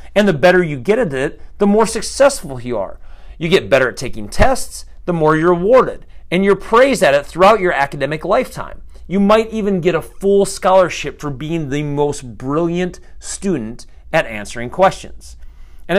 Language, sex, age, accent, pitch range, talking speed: English, male, 40-59, American, 120-185 Hz, 180 wpm